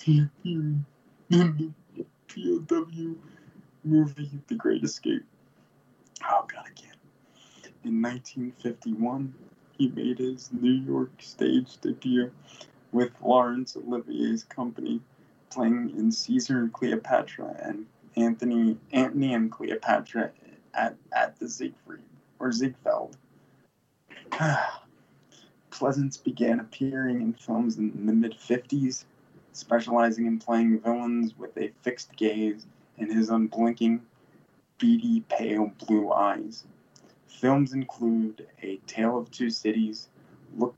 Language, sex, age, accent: English, male, 20-39, American